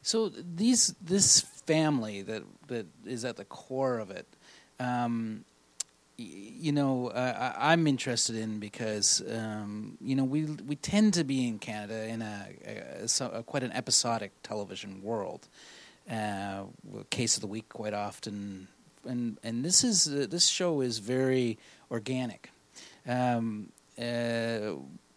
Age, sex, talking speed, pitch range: 40-59, male, 150 wpm, 115-145 Hz